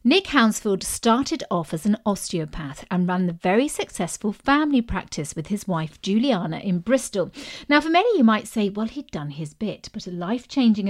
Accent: British